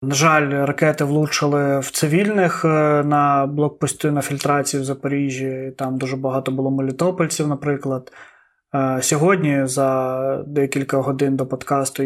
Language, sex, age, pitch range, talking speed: Ukrainian, male, 20-39, 140-160 Hz, 120 wpm